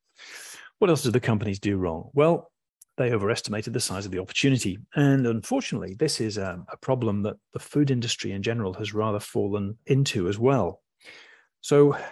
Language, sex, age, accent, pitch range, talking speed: English, male, 40-59, British, 105-145 Hz, 175 wpm